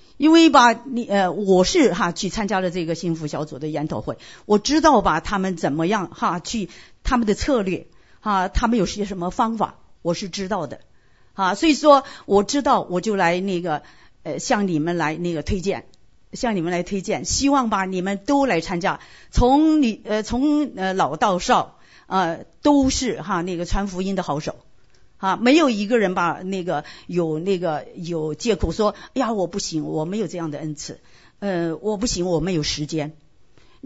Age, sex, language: 50-69, female, Chinese